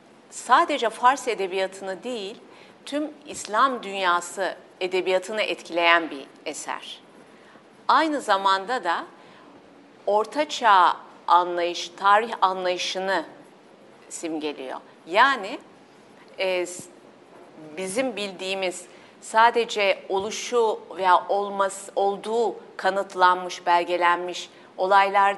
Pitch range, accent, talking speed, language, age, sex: 180-230 Hz, native, 75 wpm, Turkish, 50-69, female